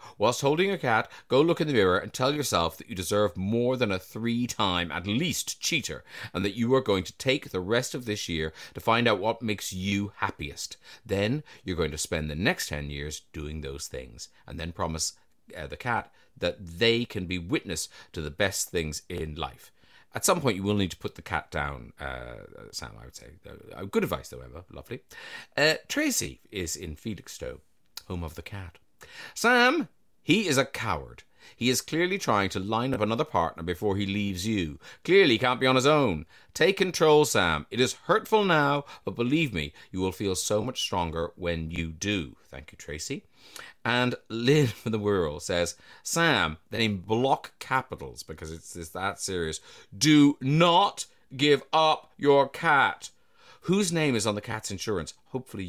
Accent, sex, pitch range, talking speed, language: British, male, 85-130 Hz, 190 wpm, English